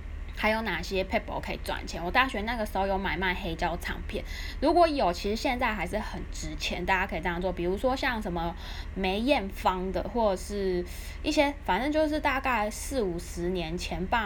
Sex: female